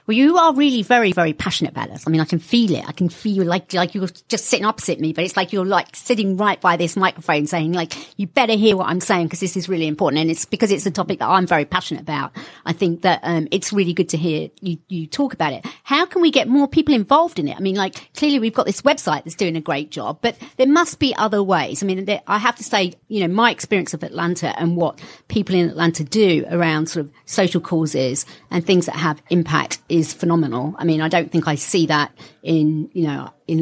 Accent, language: British, English